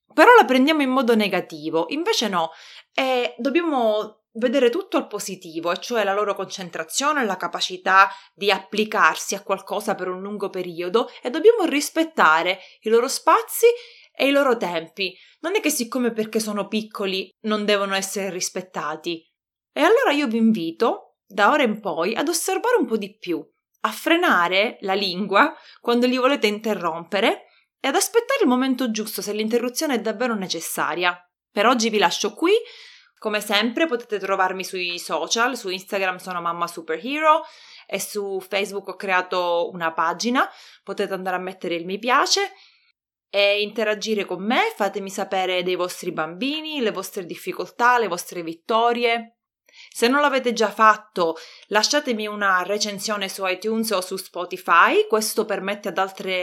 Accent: native